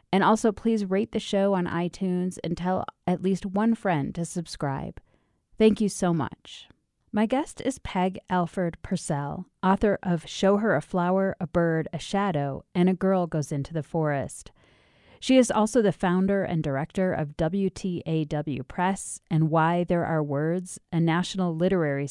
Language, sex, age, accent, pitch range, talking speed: English, female, 30-49, American, 150-185 Hz, 165 wpm